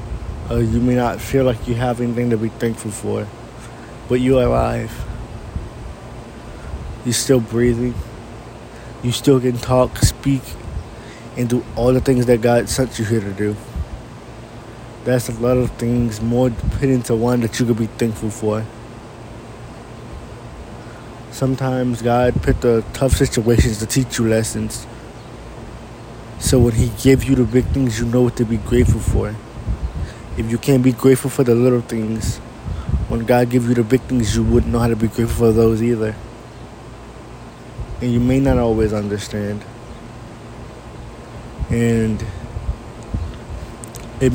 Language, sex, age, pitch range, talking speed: English, male, 20-39, 115-120 Hz, 150 wpm